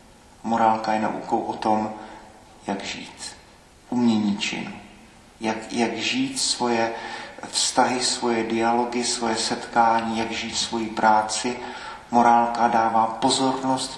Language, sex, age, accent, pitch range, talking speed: Czech, male, 40-59, native, 110-125 Hz, 105 wpm